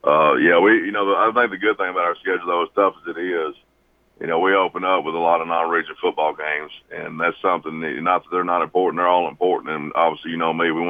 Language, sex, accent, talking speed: English, male, American, 270 wpm